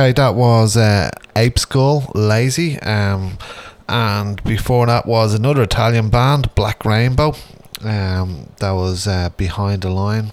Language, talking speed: English, 135 wpm